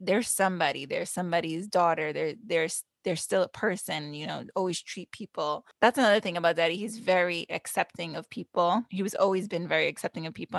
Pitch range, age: 170-215 Hz, 20-39